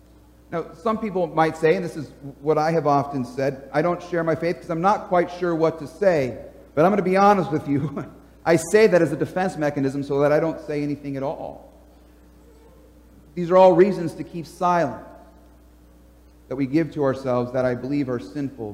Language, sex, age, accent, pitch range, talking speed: English, male, 40-59, American, 120-190 Hz, 210 wpm